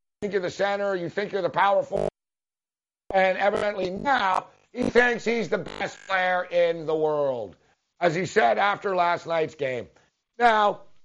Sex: male